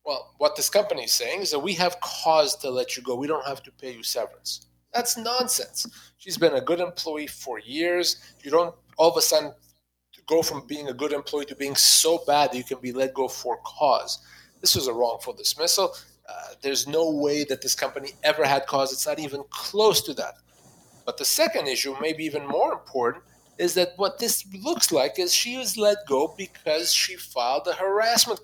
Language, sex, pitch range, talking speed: English, male, 140-190 Hz, 210 wpm